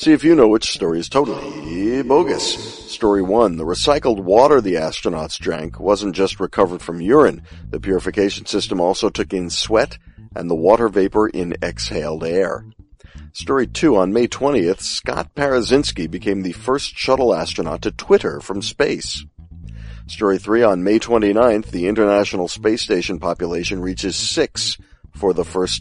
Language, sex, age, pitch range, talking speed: English, male, 50-69, 90-115 Hz, 155 wpm